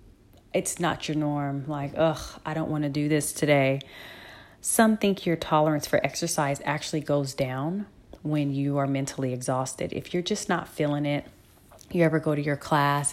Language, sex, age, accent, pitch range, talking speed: English, female, 30-49, American, 140-165 Hz, 180 wpm